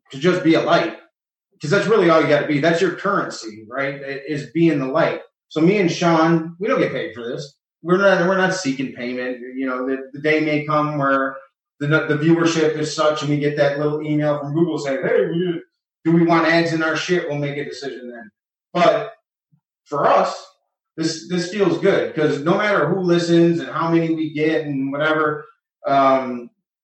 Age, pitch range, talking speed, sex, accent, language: 30-49, 140-170 Hz, 205 wpm, male, American, English